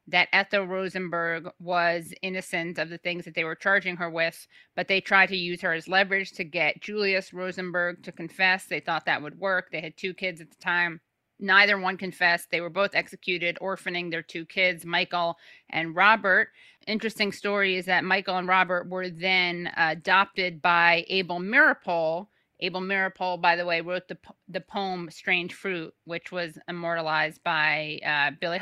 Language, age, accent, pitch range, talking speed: English, 30-49, American, 170-200 Hz, 175 wpm